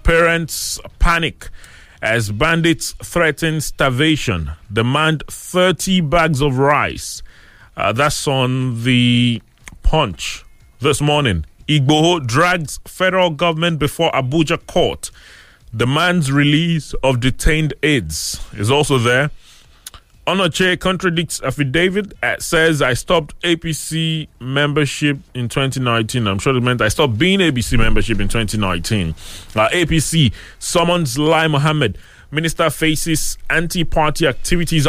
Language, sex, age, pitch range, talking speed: English, male, 30-49, 120-165 Hz, 110 wpm